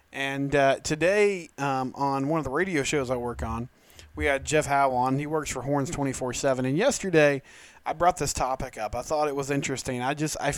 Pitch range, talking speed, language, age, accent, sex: 125-160 Hz, 225 wpm, English, 20-39, American, male